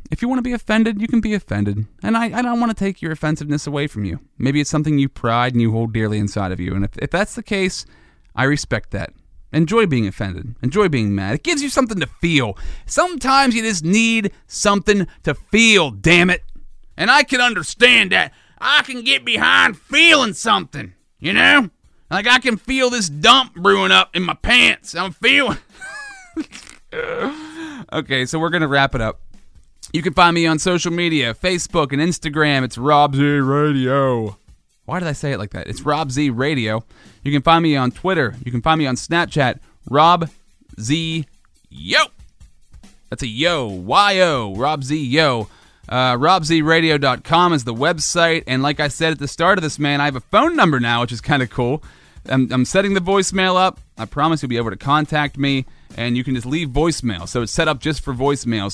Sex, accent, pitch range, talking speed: male, American, 120-185 Hz, 200 wpm